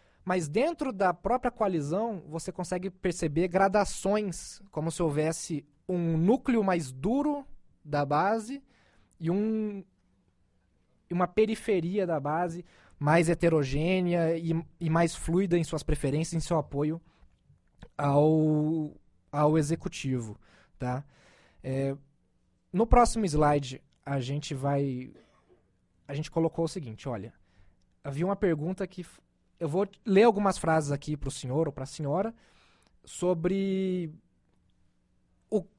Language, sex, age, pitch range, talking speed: English, male, 20-39, 145-190 Hz, 120 wpm